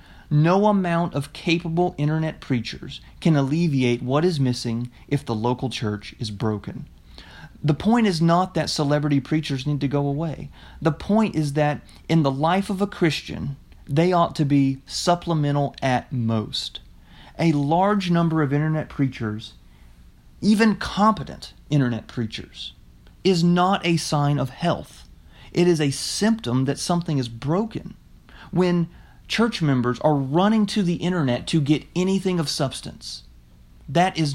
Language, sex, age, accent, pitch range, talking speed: English, male, 30-49, American, 120-170 Hz, 145 wpm